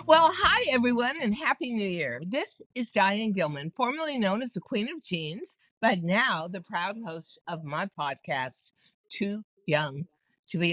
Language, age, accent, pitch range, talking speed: English, 60-79, American, 180-275 Hz, 170 wpm